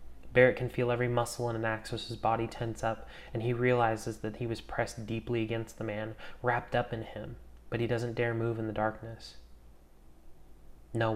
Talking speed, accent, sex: 200 wpm, American, male